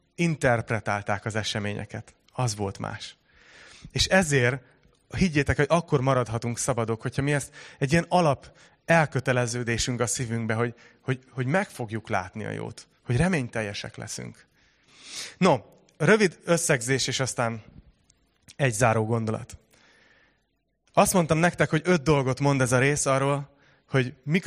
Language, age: Hungarian, 30-49